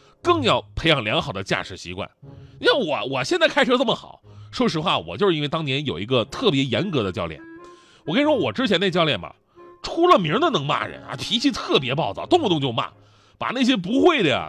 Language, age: Chinese, 30-49